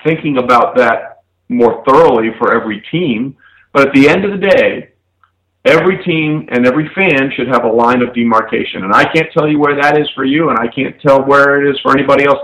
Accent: American